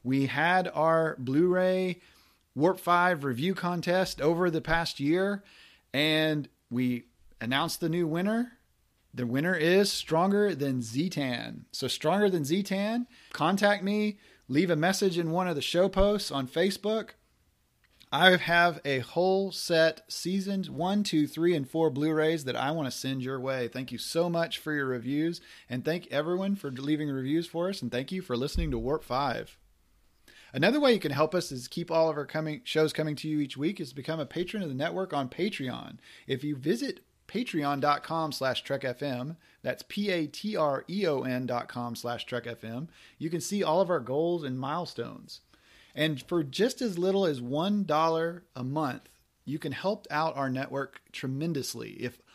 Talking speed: 170 wpm